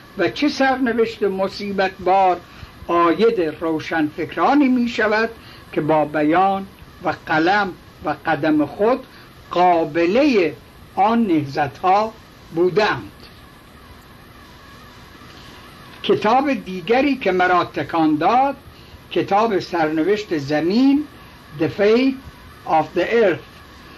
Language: Persian